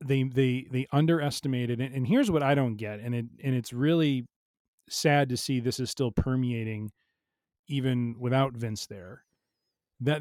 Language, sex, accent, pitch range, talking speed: English, male, American, 120-145 Hz, 160 wpm